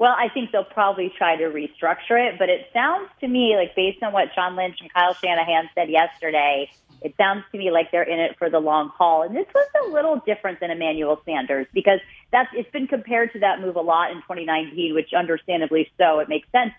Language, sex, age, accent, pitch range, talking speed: English, female, 30-49, American, 165-225 Hz, 230 wpm